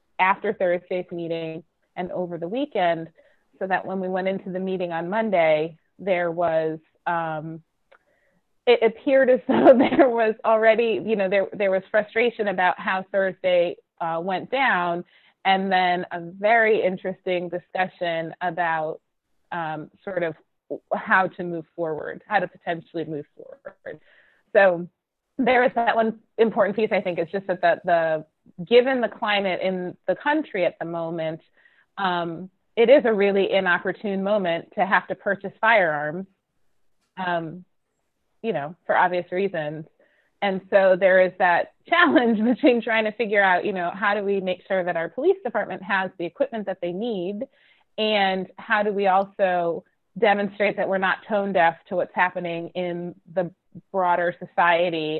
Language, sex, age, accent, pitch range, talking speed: English, female, 30-49, American, 170-205 Hz, 160 wpm